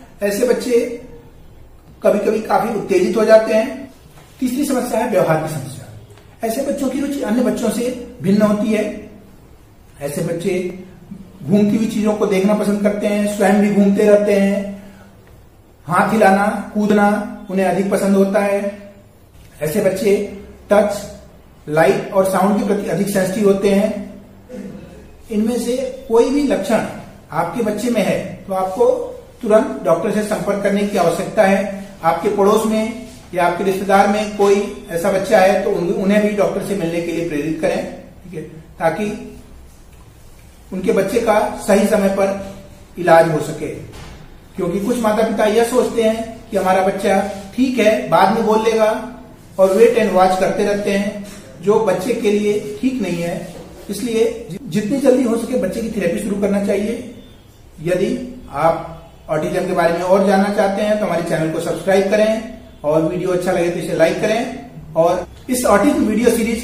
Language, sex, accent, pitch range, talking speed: Hindi, male, native, 185-220 Hz, 165 wpm